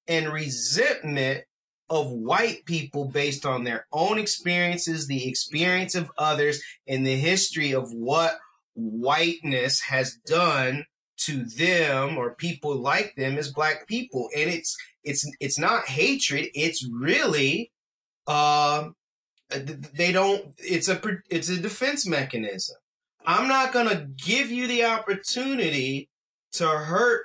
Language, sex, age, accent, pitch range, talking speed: English, male, 30-49, American, 135-180 Hz, 130 wpm